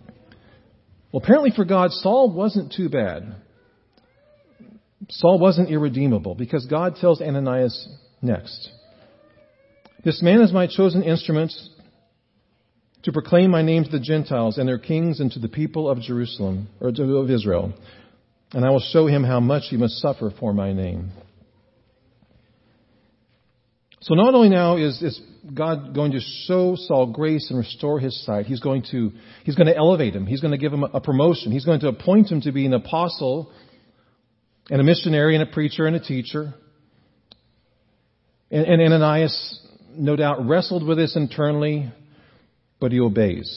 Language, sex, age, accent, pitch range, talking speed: English, male, 50-69, American, 115-160 Hz, 160 wpm